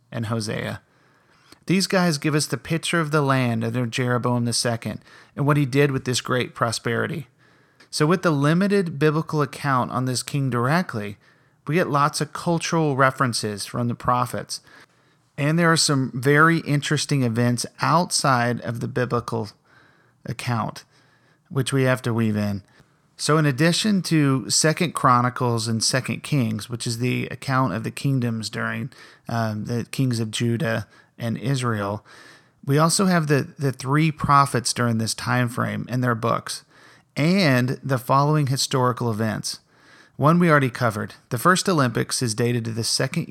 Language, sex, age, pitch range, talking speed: English, male, 40-59, 120-145 Hz, 160 wpm